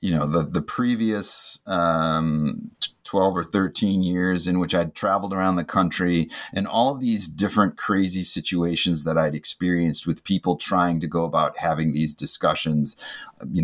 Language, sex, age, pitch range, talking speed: English, male, 30-49, 80-95 Hz, 165 wpm